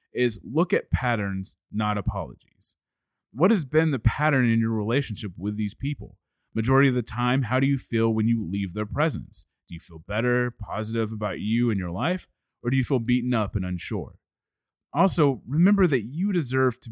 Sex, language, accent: male, English, American